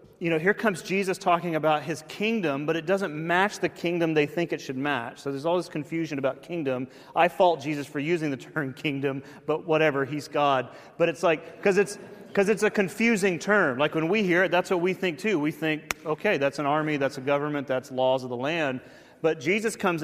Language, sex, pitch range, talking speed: English, male, 130-165 Hz, 220 wpm